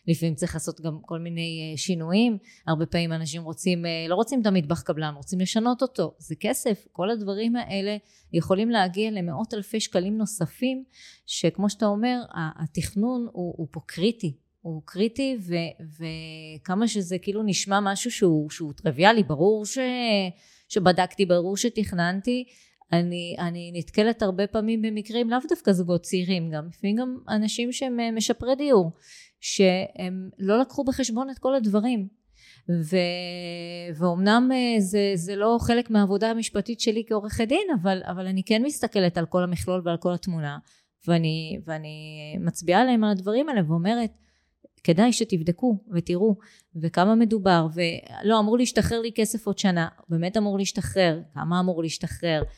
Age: 20-39